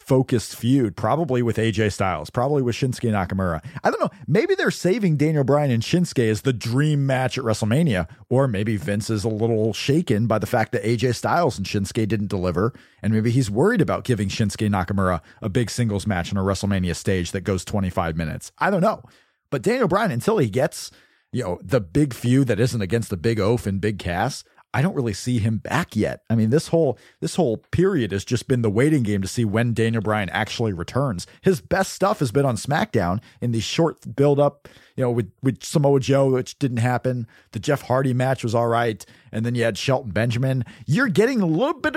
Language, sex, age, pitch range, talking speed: English, male, 40-59, 105-140 Hz, 215 wpm